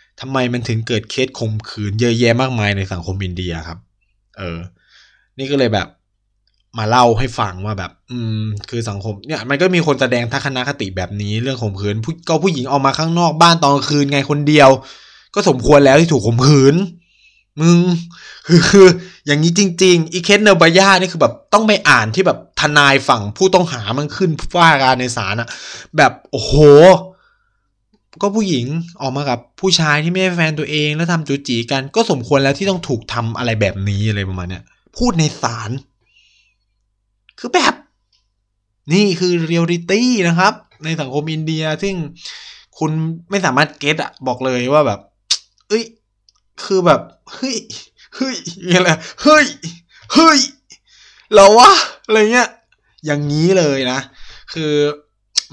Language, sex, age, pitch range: Thai, male, 20-39, 115-170 Hz